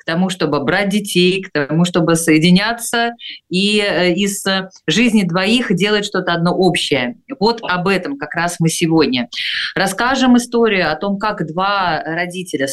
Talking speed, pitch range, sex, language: 145 wpm, 160-205 Hz, female, Russian